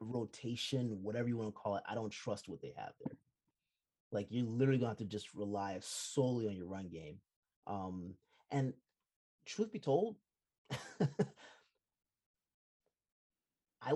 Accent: American